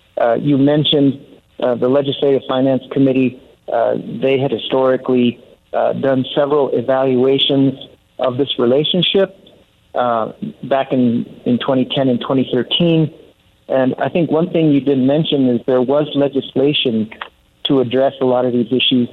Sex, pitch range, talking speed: male, 120-140 Hz, 140 wpm